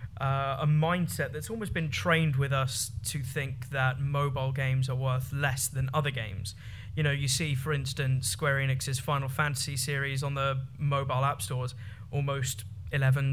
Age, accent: 20-39, British